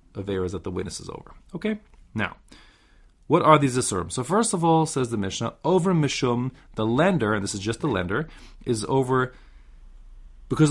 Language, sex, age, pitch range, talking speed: English, male, 30-49, 100-145 Hz, 185 wpm